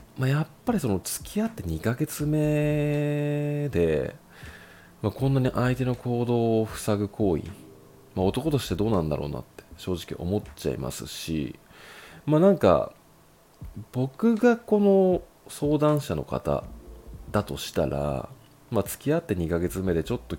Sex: male